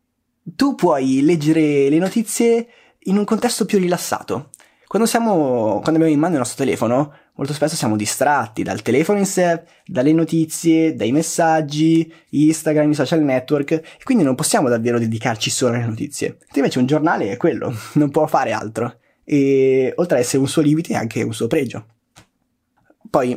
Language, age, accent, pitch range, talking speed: Italian, 20-39, native, 125-175 Hz, 170 wpm